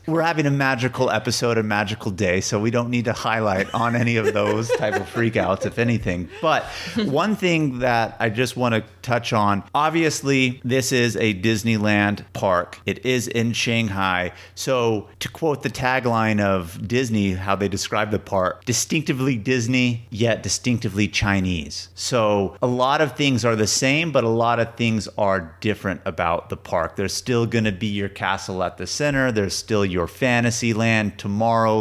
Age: 30-49